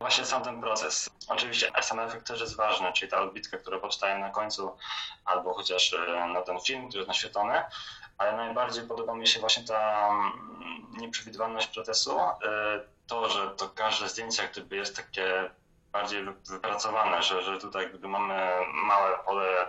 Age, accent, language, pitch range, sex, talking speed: 20-39, native, Polish, 95-115 Hz, male, 150 wpm